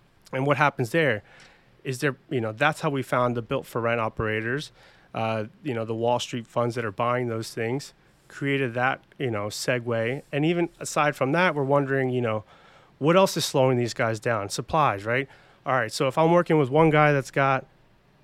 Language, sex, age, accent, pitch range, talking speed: English, male, 30-49, American, 120-155 Hz, 205 wpm